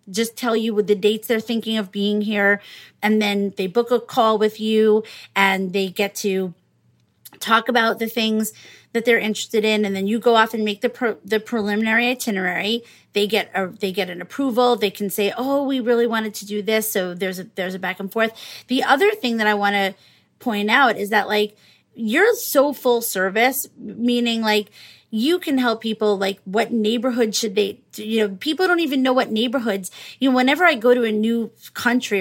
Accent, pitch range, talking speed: American, 205-245 Hz, 210 wpm